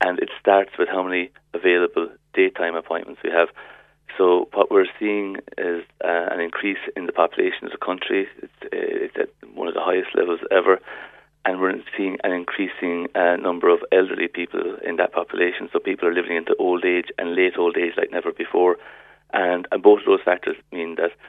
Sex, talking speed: male, 195 wpm